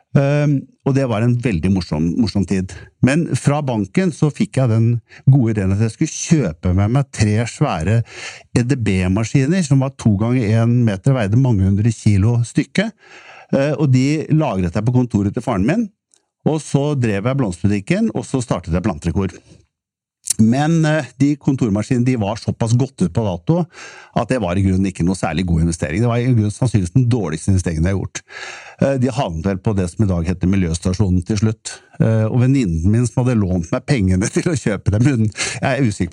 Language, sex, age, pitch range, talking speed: English, male, 60-79, 100-140 Hz, 190 wpm